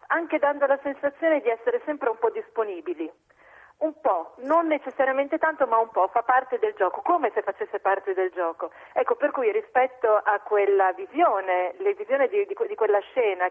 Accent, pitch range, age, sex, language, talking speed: native, 200-285 Hz, 40-59, female, Italian, 185 wpm